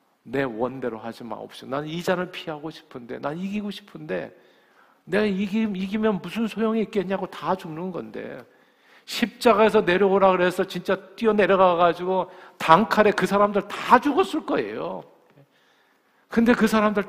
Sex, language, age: male, Korean, 50-69